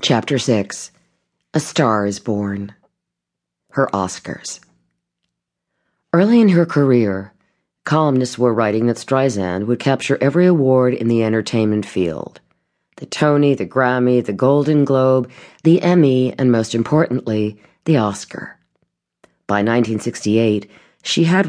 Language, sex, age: English, female, 40-59